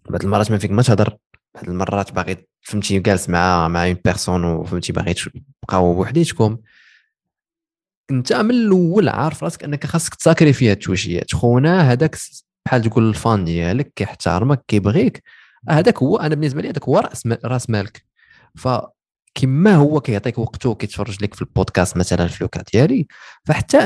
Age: 20-39